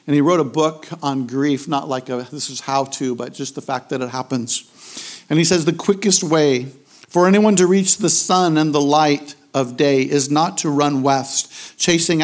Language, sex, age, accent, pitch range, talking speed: English, male, 50-69, American, 145-190 Hz, 215 wpm